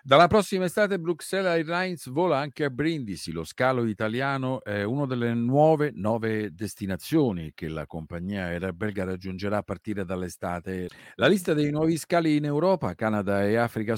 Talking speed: 155 wpm